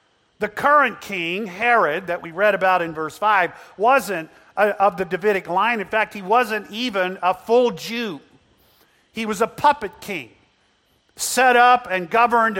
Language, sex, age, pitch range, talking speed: English, male, 50-69, 125-190 Hz, 155 wpm